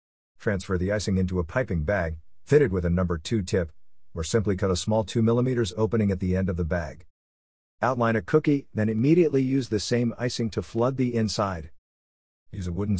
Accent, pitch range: American, 85-115 Hz